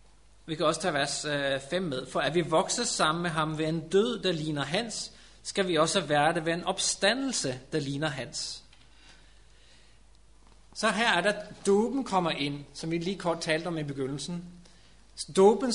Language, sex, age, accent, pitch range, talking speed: Danish, male, 30-49, native, 155-195 Hz, 180 wpm